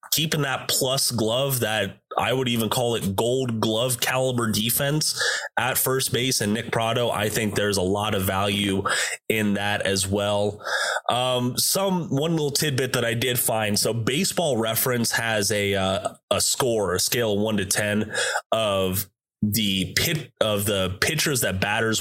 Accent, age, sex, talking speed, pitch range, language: American, 20-39, male, 165 wpm, 105-130 Hz, English